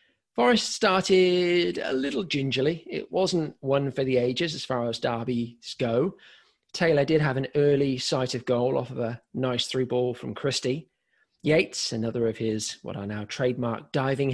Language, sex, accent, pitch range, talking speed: English, male, British, 115-150 Hz, 170 wpm